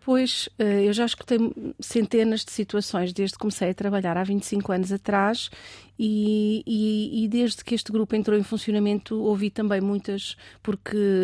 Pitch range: 195-230 Hz